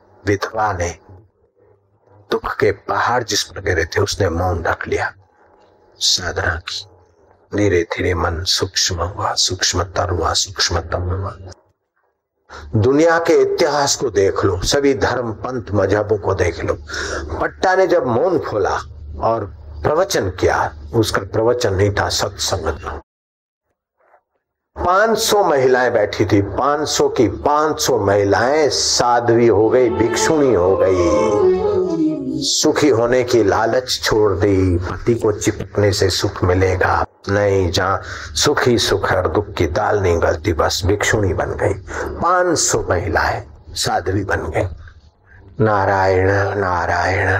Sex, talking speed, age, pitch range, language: male, 115 wpm, 50-69, 90-115 Hz, Hindi